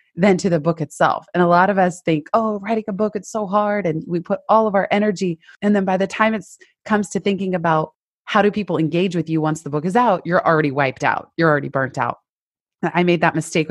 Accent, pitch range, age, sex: American, 155-190 Hz, 20-39, female